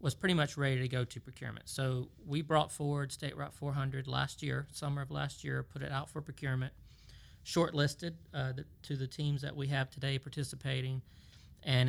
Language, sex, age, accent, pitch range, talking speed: English, male, 40-59, American, 130-145 Hz, 190 wpm